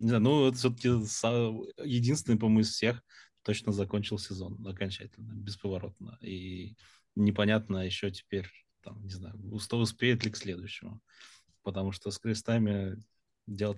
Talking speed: 130 wpm